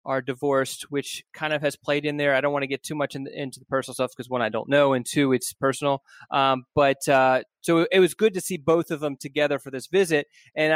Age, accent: 20-39, American